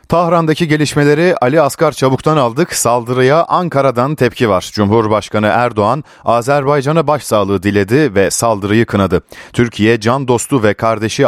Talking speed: 120 wpm